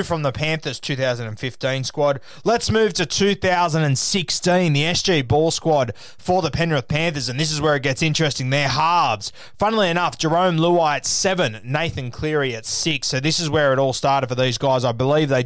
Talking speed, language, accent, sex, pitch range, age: 190 wpm, English, Australian, male, 125-150 Hz, 20-39